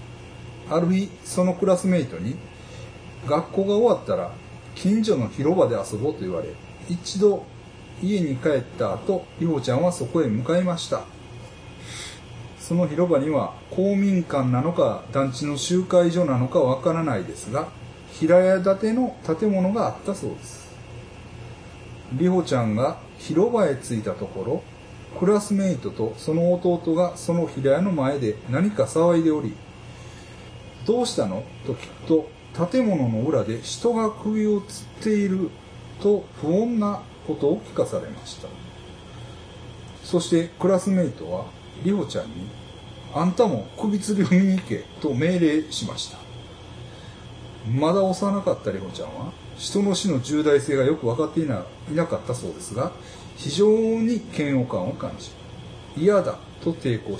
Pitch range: 125-190 Hz